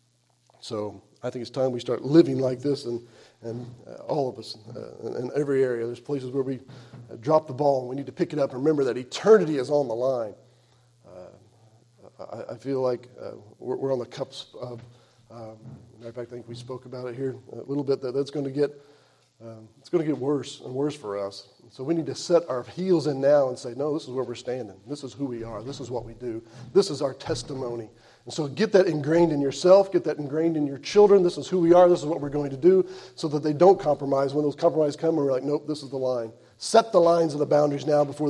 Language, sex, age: English, male, 40-59